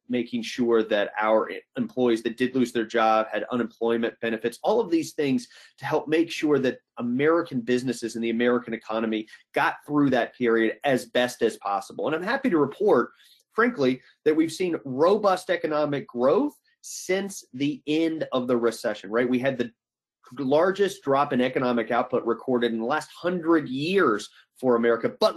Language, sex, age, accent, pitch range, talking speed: English, male, 30-49, American, 120-155 Hz, 170 wpm